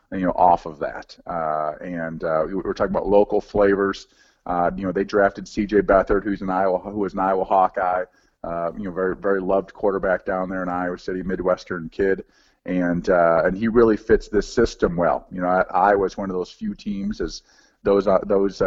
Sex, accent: male, American